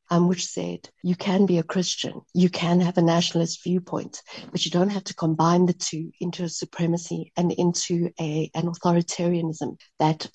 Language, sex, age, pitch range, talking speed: English, female, 60-79, 170-190 Hz, 180 wpm